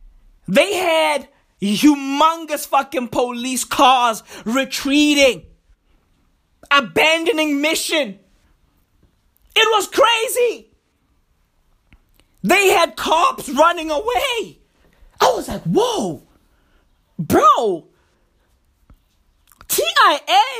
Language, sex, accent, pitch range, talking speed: English, male, American, 220-330 Hz, 65 wpm